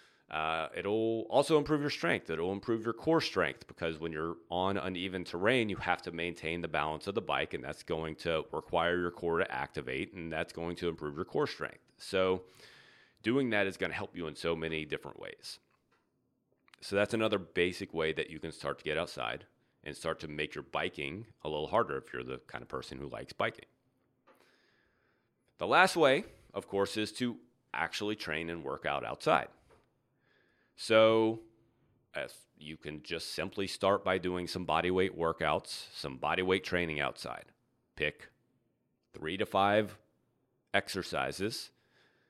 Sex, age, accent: male, 30-49, American